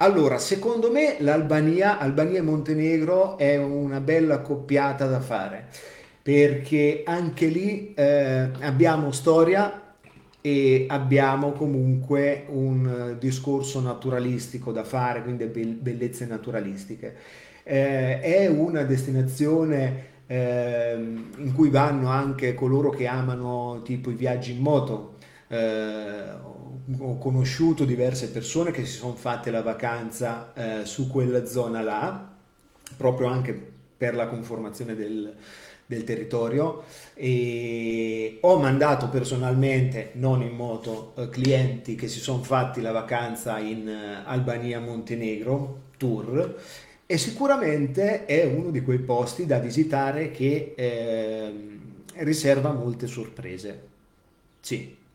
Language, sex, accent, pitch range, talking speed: Italian, male, native, 120-145 Hz, 115 wpm